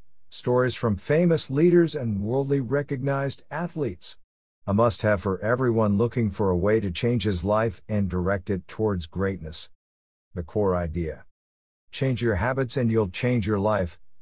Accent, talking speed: American, 150 wpm